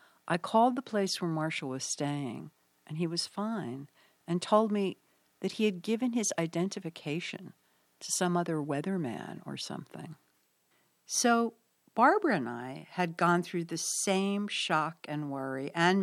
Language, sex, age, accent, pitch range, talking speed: English, female, 60-79, American, 145-190 Hz, 150 wpm